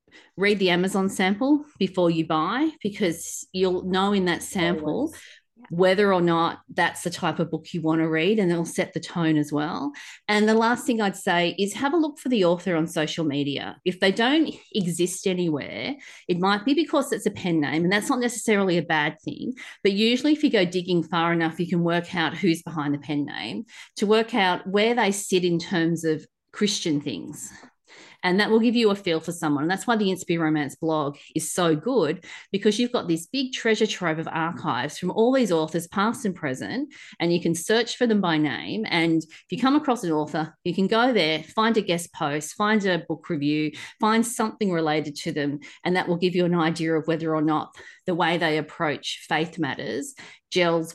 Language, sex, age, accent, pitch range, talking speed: English, female, 40-59, Australian, 160-215 Hz, 215 wpm